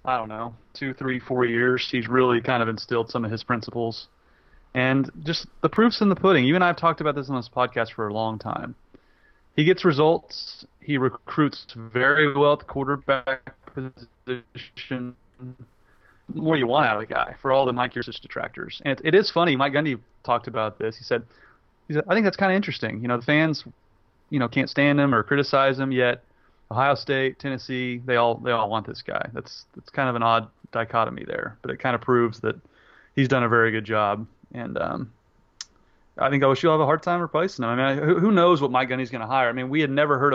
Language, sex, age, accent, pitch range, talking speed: English, male, 30-49, American, 115-145 Hz, 225 wpm